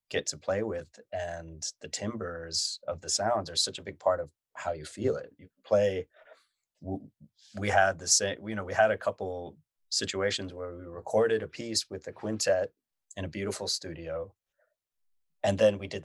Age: 30-49